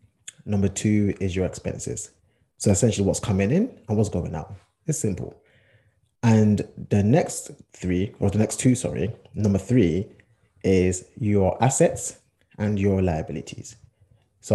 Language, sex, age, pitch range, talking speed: English, male, 20-39, 95-115 Hz, 140 wpm